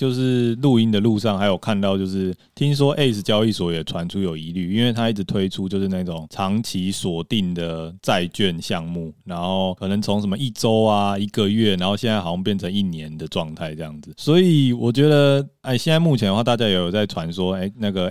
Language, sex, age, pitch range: Chinese, male, 20-39, 90-115 Hz